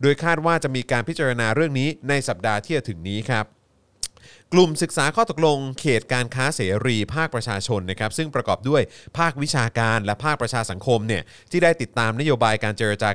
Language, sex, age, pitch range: Thai, male, 30-49, 115-160 Hz